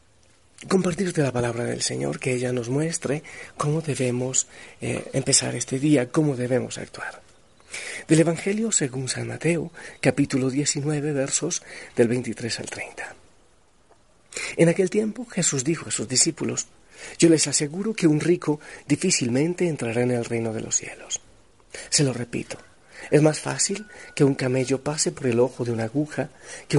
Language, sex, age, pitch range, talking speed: Spanish, male, 40-59, 125-165 Hz, 155 wpm